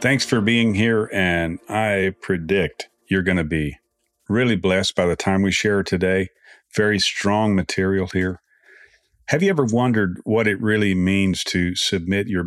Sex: male